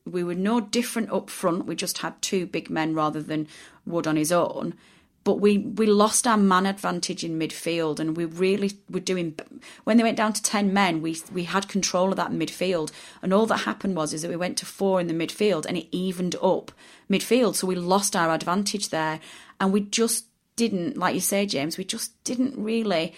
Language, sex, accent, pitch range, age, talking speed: English, female, British, 175-220 Hz, 30-49, 215 wpm